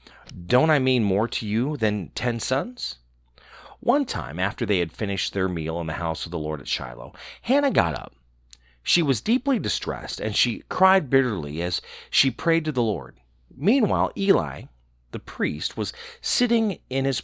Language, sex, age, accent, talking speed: English, male, 40-59, American, 175 wpm